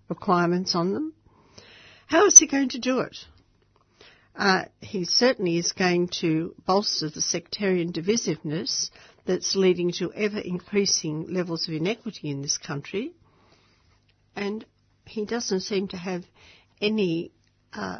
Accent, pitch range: Australian, 175-225 Hz